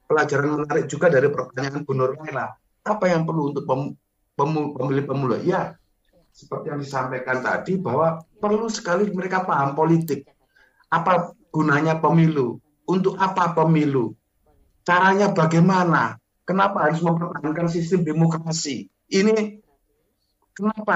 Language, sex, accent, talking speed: Indonesian, male, native, 110 wpm